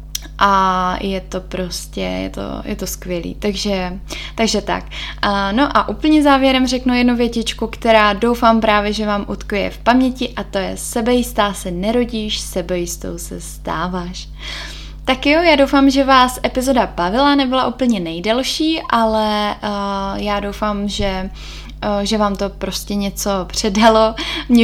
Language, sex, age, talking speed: Czech, female, 10-29, 140 wpm